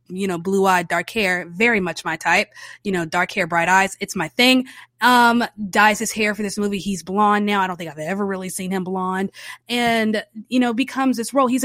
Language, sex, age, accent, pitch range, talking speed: English, female, 20-39, American, 195-235 Hz, 230 wpm